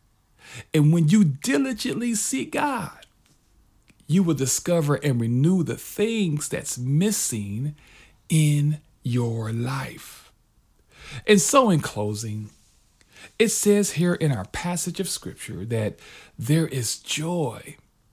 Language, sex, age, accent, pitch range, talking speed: English, male, 40-59, American, 115-170 Hz, 115 wpm